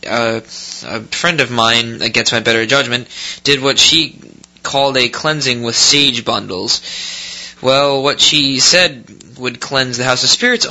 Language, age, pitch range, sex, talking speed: English, 20-39, 120-140 Hz, male, 155 wpm